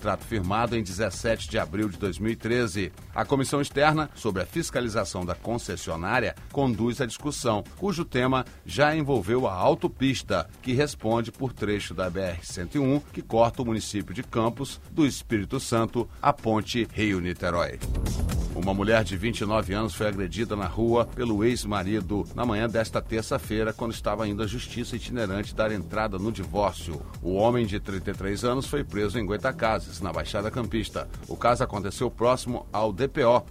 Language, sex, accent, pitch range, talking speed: Portuguese, male, Brazilian, 100-125 Hz, 155 wpm